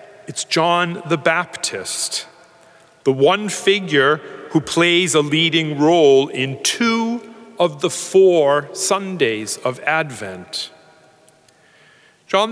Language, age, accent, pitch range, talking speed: English, 40-59, American, 140-190 Hz, 100 wpm